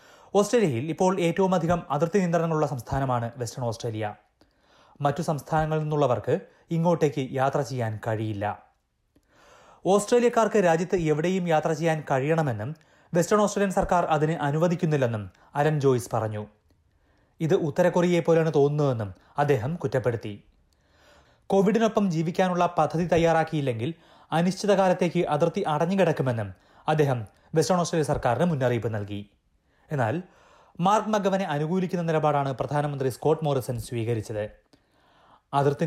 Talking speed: 100 wpm